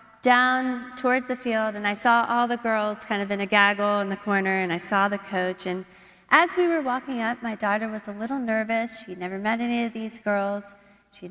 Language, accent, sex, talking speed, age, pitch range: English, American, female, 230 wpm, 30-49, 220-305 Hz